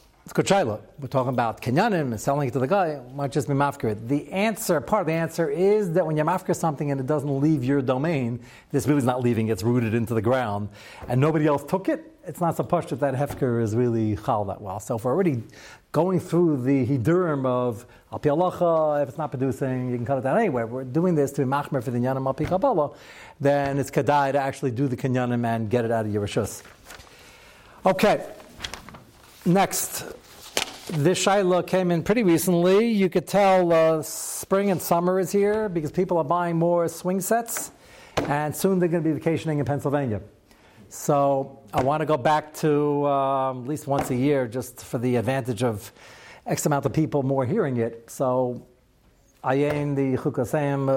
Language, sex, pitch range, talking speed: English, male, 125-160 Hz, 200 wpm